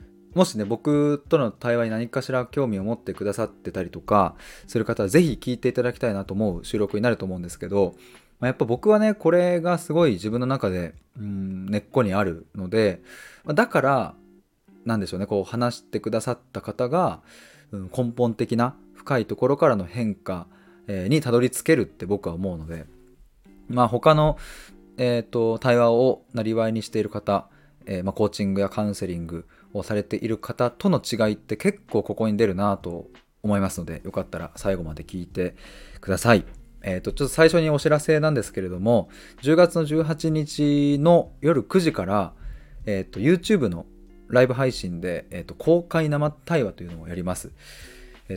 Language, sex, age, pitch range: Japanese, male, 20-39, 95-140 Hz